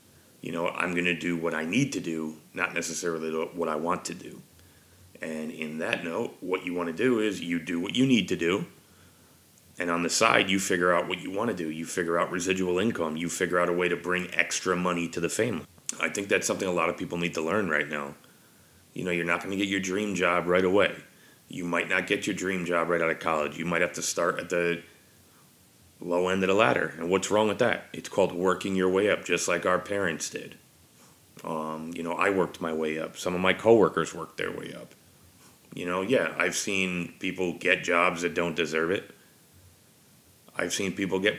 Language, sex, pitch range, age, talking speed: English, male, 85-95 Hz, 30-49, 230 wpm